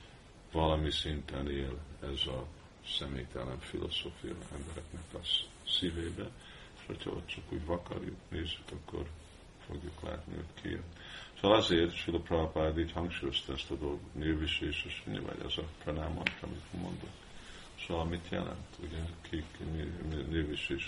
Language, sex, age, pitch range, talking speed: Hungarian, male, 50-69, 75-90 Hz, 130 wpm